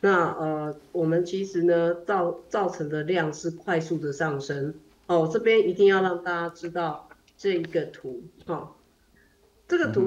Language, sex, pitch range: Chinese, female, 160-225 Hz